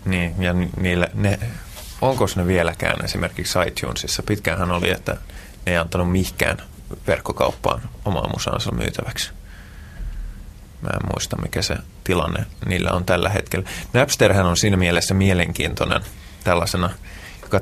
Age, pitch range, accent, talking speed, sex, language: 20-39, 85-100 Hz, native, 115 wpm, male, Finnish